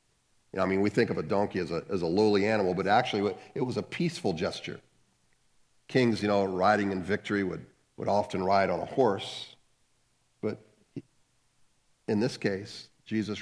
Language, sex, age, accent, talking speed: English, male, 50-69, American, 180 wpm